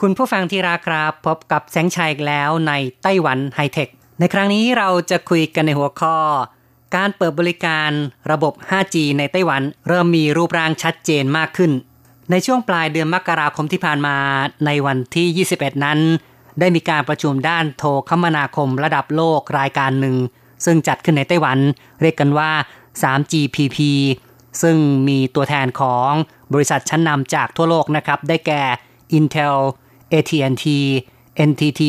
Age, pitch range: 30-49, 135-165 Hz